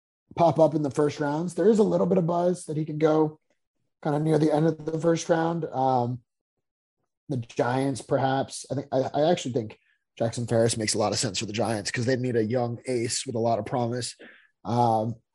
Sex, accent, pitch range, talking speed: male, American, 120-155 Hz, 225 wpm